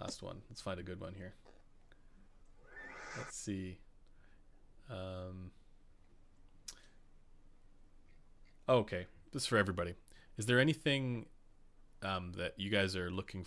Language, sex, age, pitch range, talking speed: English, male, 30-49, 85-105 Hz, 110 wpm